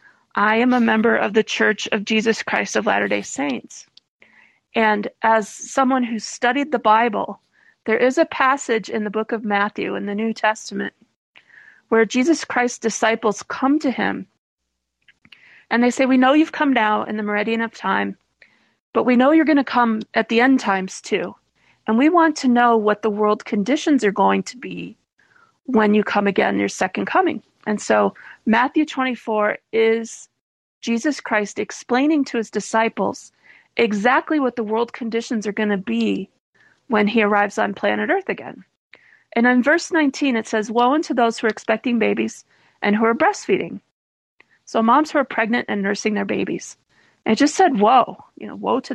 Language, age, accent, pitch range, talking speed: English, 40-59, American, 215-265 Hz, 180 wpm